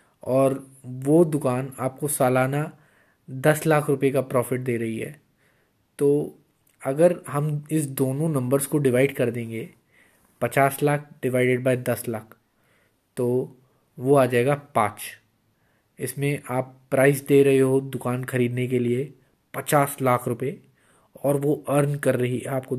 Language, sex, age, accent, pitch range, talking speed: Hindi, male, 20-39, native, 125-150 Hz, 140 wpm